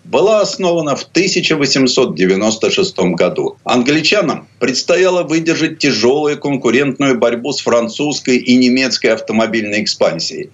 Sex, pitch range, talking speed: male, 105-170 Hz, 95 wpm